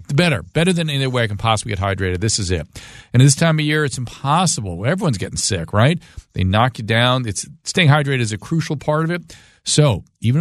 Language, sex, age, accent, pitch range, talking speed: English, male, 40-59, American, 100-135 Hz, 235 wpm